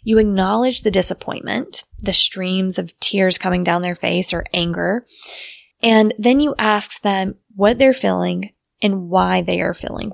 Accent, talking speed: American, 160 wpm